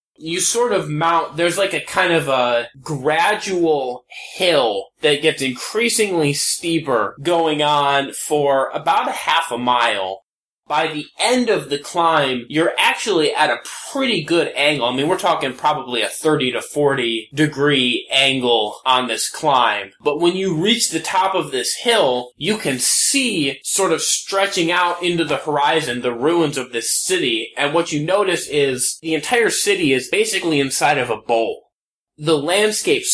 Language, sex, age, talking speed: English, male, 20-39, 165 wpm